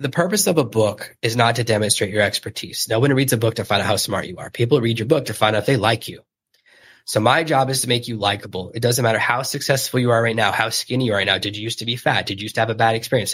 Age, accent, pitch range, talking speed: 20-39, American, 110-135 Hz, 320 wpm